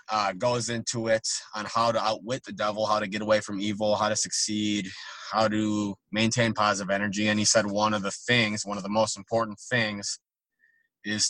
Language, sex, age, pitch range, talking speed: English, male, 20-39, 100-115 Hz, 200 wpm